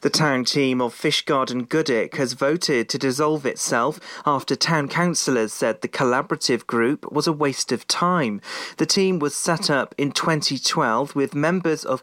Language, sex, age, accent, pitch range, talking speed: English, male, 40-59, British, 130-165 Hz, 165 wpm